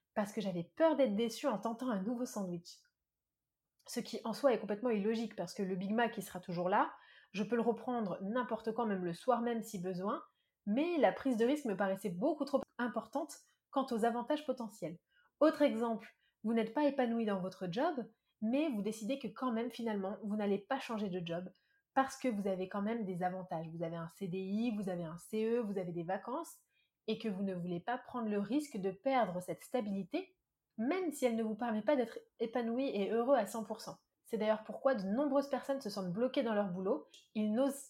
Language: French